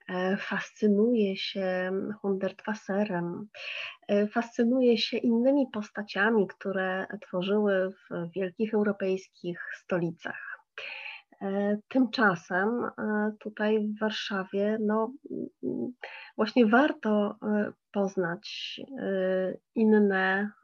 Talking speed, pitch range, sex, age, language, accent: 65 wpm, 195-235 Hz, female, 30-49, Polish, native